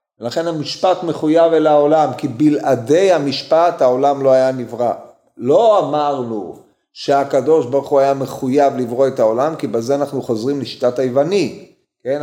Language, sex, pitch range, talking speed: Hebrew, male, 130-165 Hz, 140 wpm